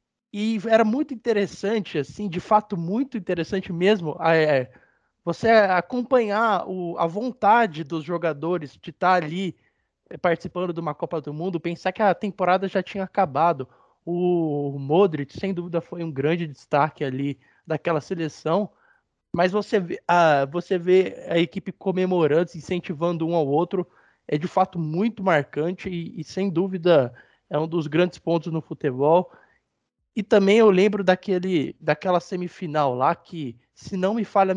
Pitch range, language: 150-185 Hz, Portuguese